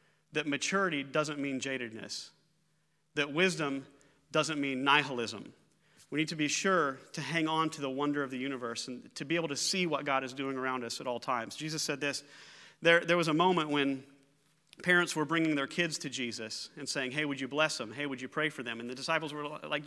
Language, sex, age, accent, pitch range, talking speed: English, male, 40-59, American, 130-160 Hz, 220 wpm